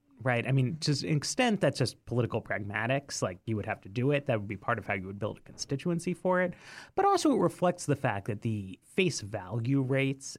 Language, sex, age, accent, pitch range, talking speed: English, male, 30-49, American, 110-145 Hz, 235 wpm